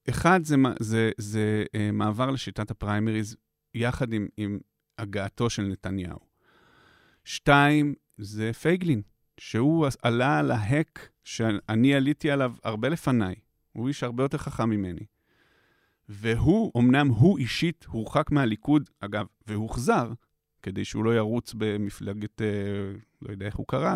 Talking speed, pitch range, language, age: 125 wpm, 100-135 Hz, Hebrew, 40-59